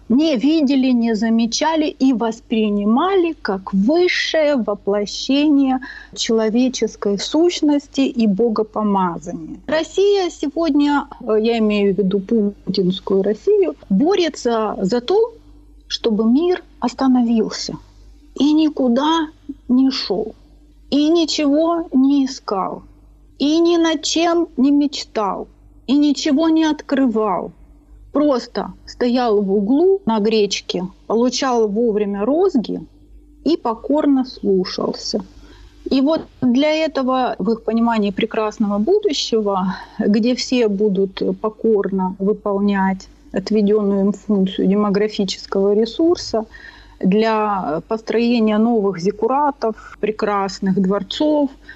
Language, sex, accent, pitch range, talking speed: Russian, female, native, 210-290 Hz, 95 wpm